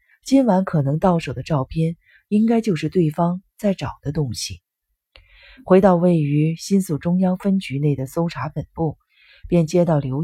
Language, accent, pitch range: Chinese, native, 135-195 Hz